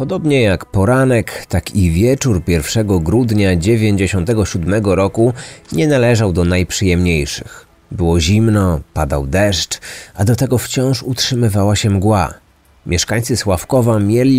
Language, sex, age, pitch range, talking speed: Polish, male, 30-49, 90-120 Hz, 115 wpm